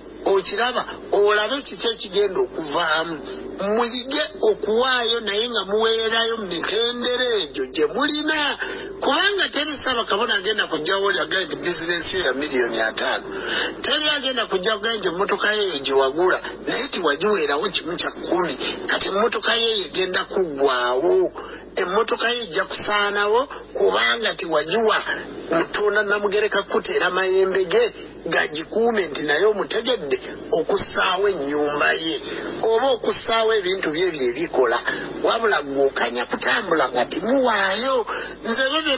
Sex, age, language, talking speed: male, 50-69, English, 115 wpm